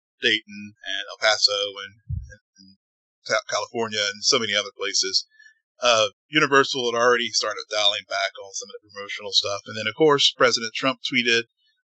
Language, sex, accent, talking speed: English, male, American, 165 wpm